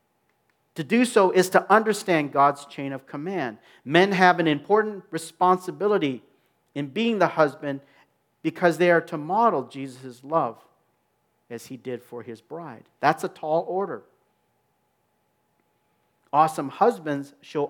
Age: 50-69